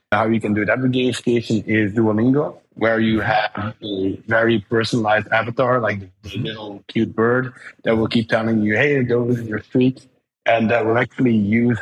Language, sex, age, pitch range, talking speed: English, male, 30-49, 110-135 Hz, 190 wpm